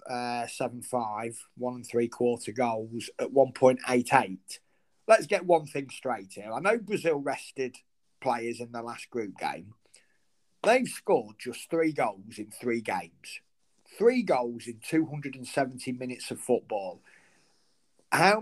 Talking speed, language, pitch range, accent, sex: 130 wpm, English, 125-180 Hz, British, male